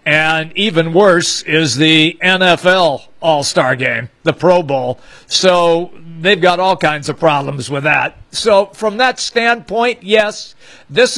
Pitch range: 170-215 Hz